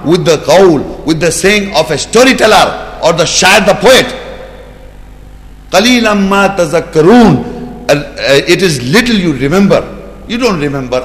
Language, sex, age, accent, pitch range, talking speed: English, male, 60-79, Indian, 170-240 Hz, 135 wpm